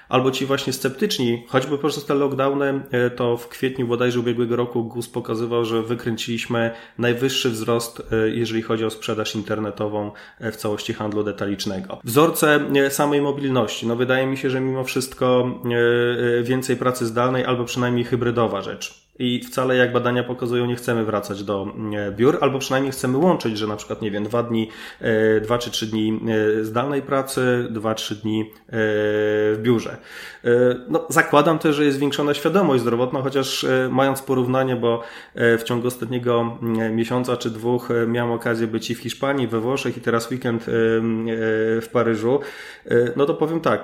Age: 30-49